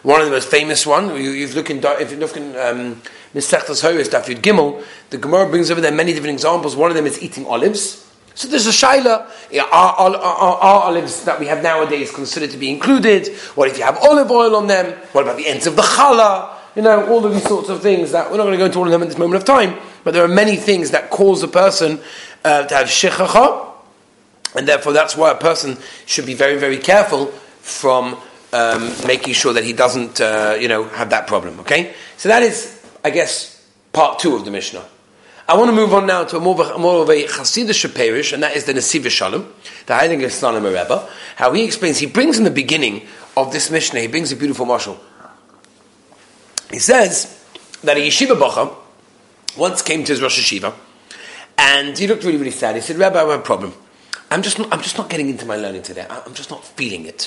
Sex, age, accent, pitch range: male, 30-49, British, 140-200 Hz